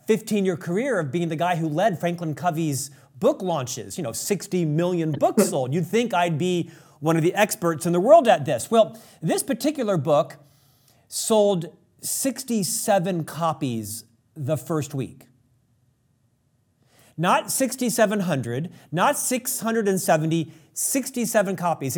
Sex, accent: male, American